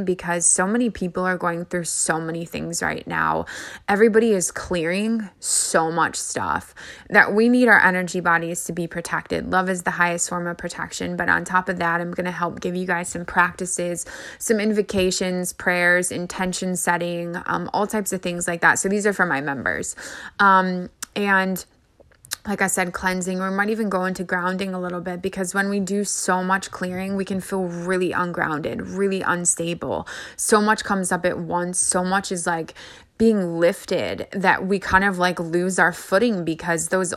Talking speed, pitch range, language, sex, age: 190 wpm, 175-190 Hz, English, female, 20-39